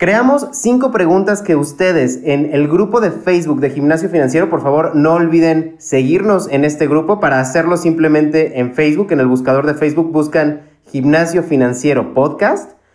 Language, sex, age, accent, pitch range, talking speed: Spanish, male, 30-49, Mexican, 150-190 Hz, 160 wpm